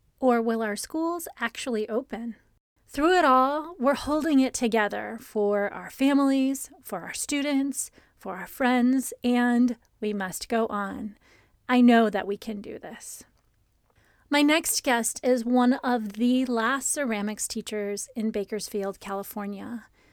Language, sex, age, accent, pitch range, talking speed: English, female, 30-49, American, 220-275 Hz, 140 wpm